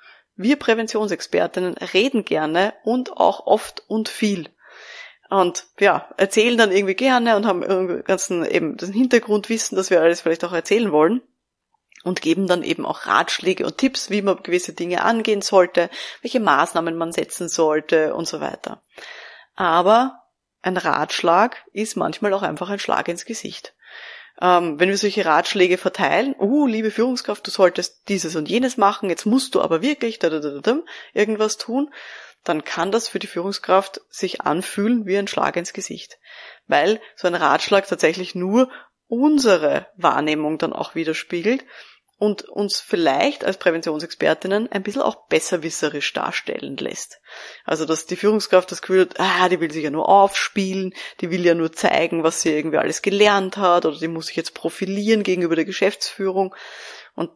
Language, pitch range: German, 175-215 Hz